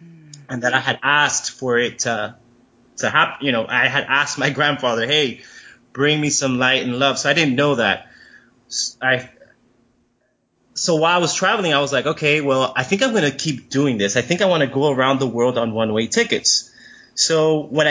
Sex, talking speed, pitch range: male, 210 wpm, 125-145 Hz